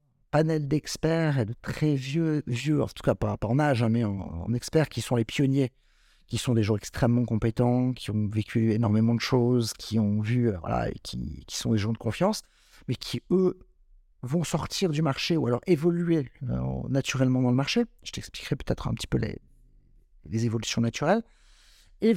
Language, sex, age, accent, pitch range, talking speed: French, male, 50-69, French, 115-145 Hz, 190 wpm